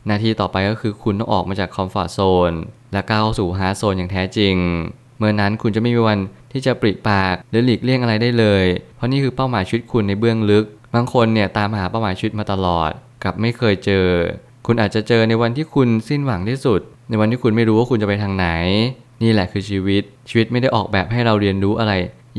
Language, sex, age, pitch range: Thai, male, 20-39, 100-120 Hz